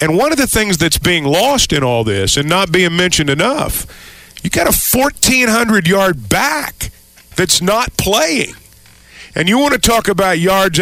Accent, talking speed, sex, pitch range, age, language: American, 170 wpm, male, 145-190 Hz, 50-69, English